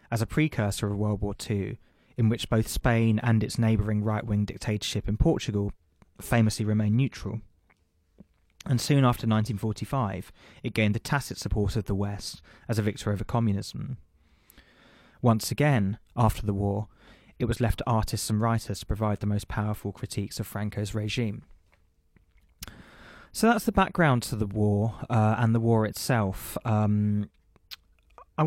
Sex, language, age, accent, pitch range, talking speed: male, English, 20-39, British, 105-115 Hz, 155 wpm